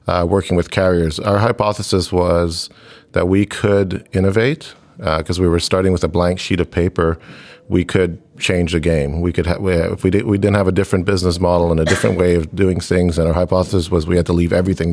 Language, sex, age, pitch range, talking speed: English, male, 40-59, 85-95 Hz, 230 wpm